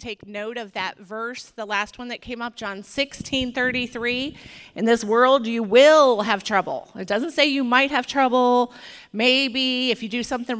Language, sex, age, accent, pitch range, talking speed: English, female, 30-49, American, 225-285 Hz, 180 wpm